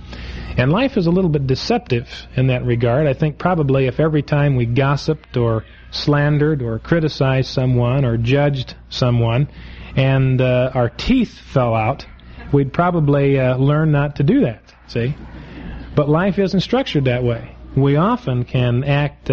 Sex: male